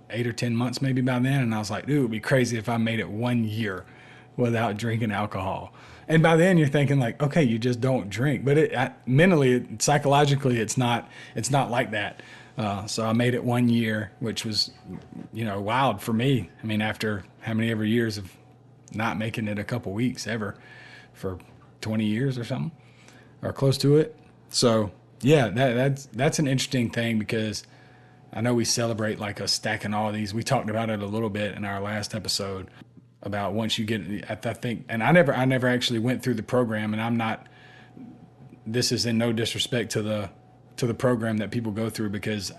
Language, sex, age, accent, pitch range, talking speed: English, male, 30-49, American, 110-125 Hz, 205 wpm